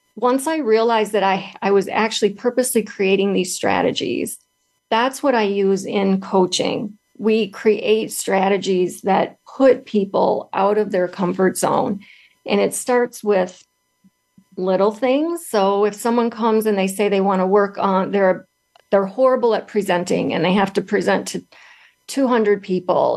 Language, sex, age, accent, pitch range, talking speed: English, female, 40-59, American, 185-215 Hz, 155 wpm